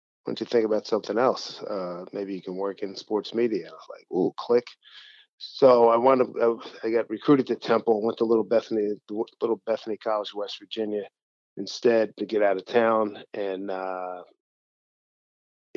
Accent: American